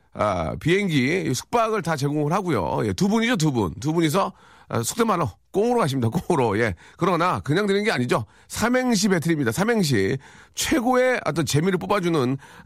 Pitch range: 140-205 Hz